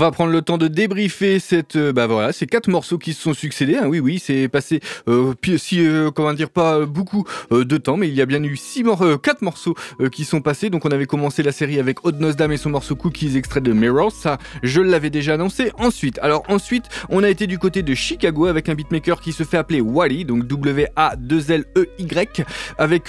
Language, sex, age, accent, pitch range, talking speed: French, male, 20-39, French, 135-170 Hz, 230 wpm